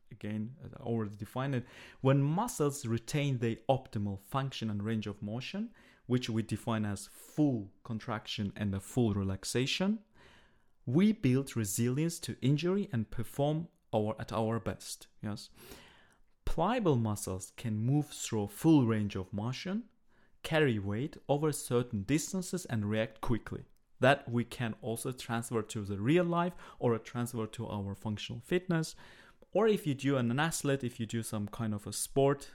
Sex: male